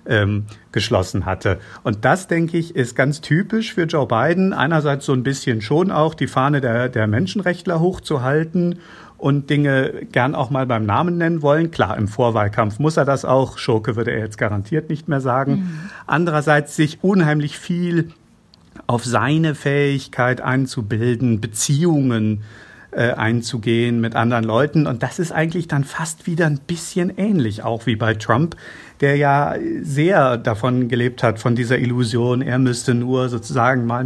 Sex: male